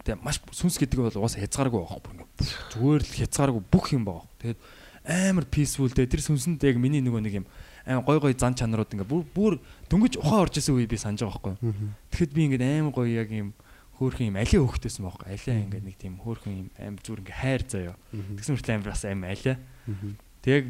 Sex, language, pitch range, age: male, Korean, 100-135 Hz, 20-39